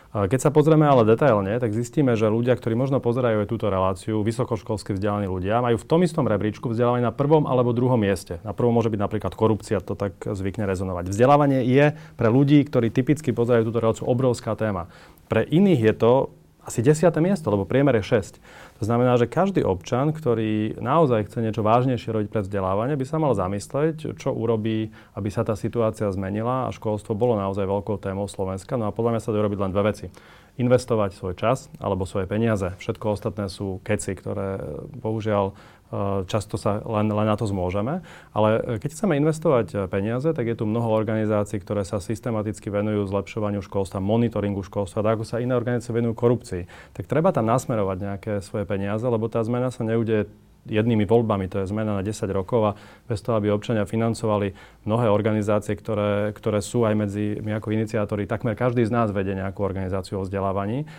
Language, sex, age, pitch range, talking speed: Slovak, male, 30-49, 100-120 Hz, 190 wpm